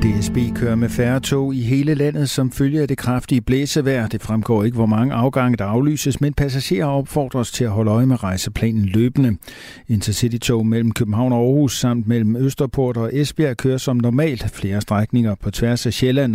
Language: Danish